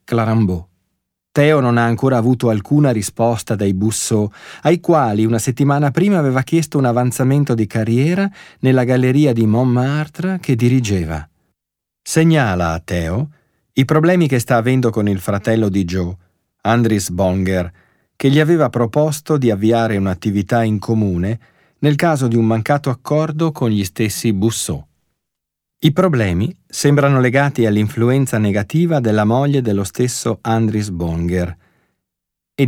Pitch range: 105-145 Hz